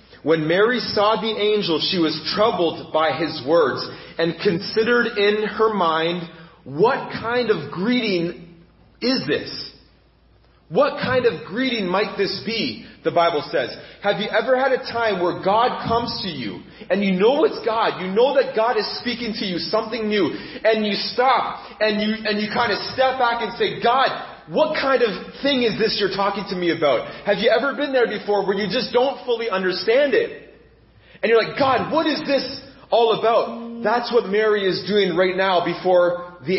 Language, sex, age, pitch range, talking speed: English, male, 30-49, 185-240 Hz, 185 wpm